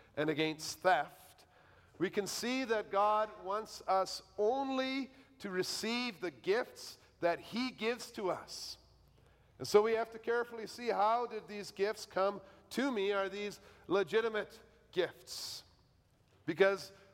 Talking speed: 135 wpm